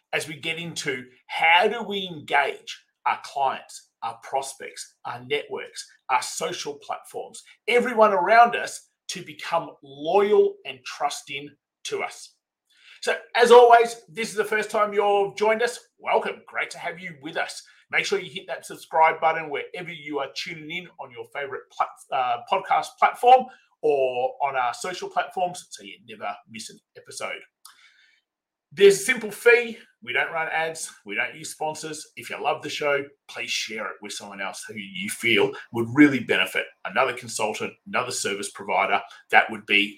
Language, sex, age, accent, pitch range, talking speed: English, male, 30-49, Australian, 160-270 Hz, 165 wpm